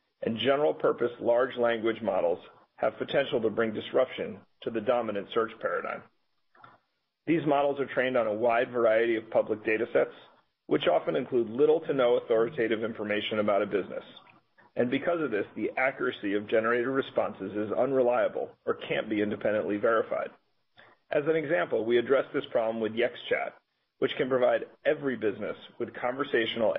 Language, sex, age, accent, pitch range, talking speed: English, male, 40-59, American, 110-130 Hz, 155 wpm